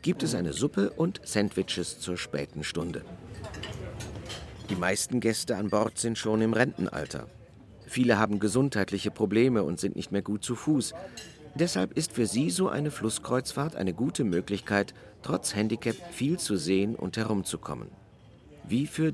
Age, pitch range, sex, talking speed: 50-69, 100-130 Hz, male, 150 wpm